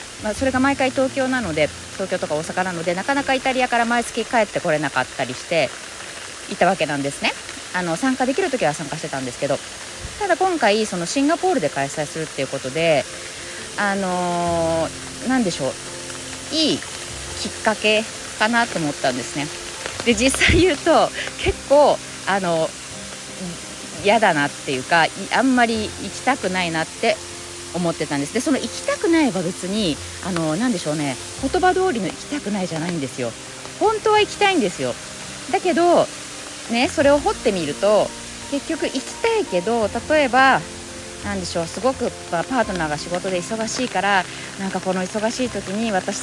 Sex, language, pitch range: female, Japanese, 160-260 Hz